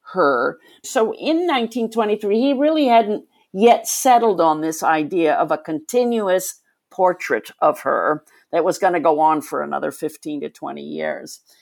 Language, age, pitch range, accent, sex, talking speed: English, 50-69, 175-285 Hz, American, female, 155 wpm